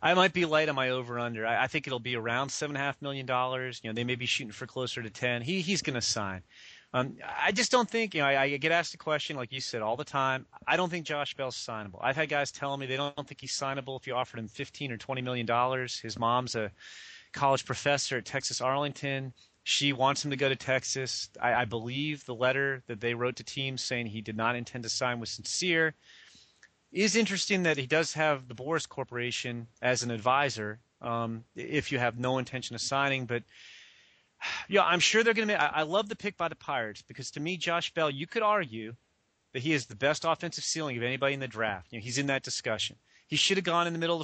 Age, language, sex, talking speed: 30-49, English, male, 250 wpm